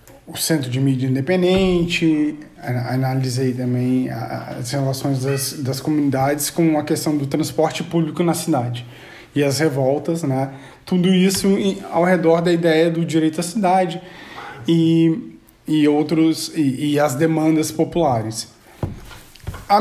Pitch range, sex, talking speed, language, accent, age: 150-195 Hz, male, 125 wpm, Portuguese, Brazilian, 20-39